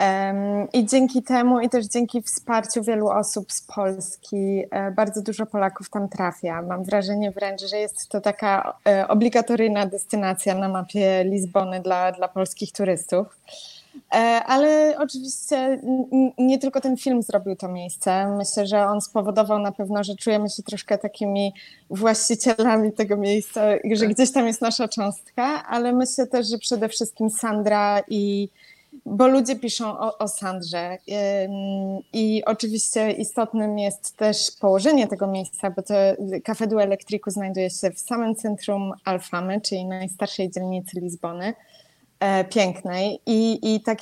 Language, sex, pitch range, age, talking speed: Polish, female, 195-225 Hz, 20-39, 140 wpm